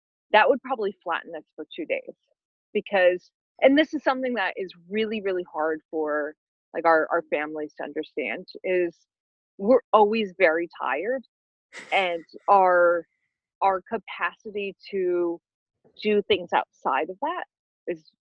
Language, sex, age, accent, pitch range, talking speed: English, female, 20-39, American, 170-230 Hz, 135 wpm